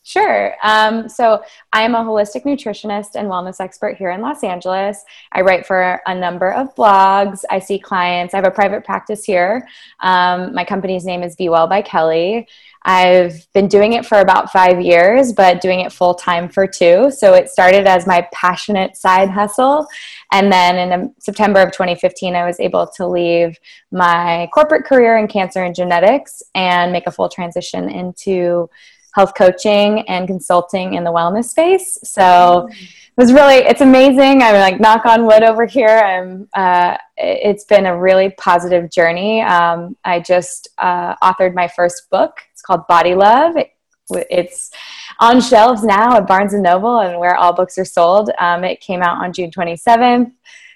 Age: 20-39